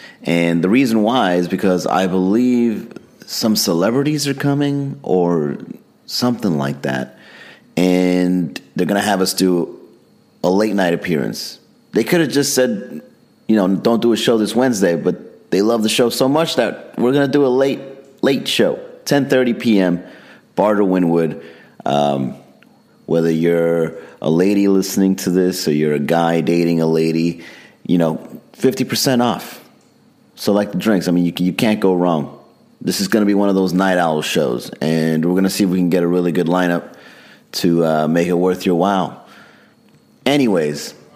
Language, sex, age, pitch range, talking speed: English, male, 30-49, 85-120 Hz, 180 wpm